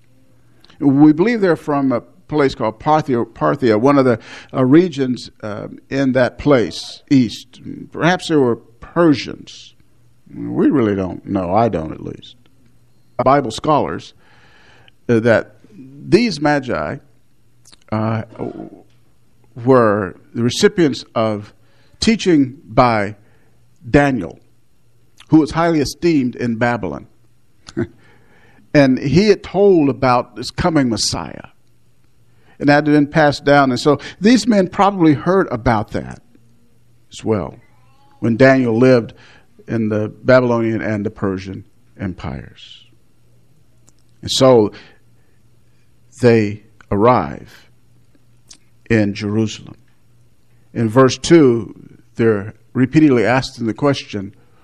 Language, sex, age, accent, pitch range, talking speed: English, male, 50-69, American, 115-140 Hz, 110 wpm